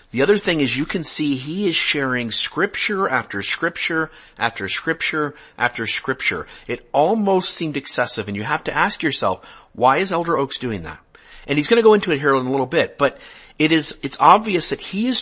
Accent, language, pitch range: American, English, 125-165 Hz